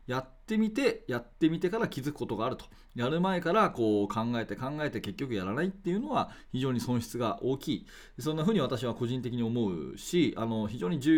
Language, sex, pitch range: Japanese, male, 105-145 Hz